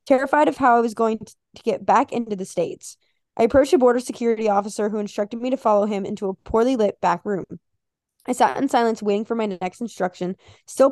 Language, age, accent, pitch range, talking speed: English, 20-39, American, 195-245 Hz, 220 wpm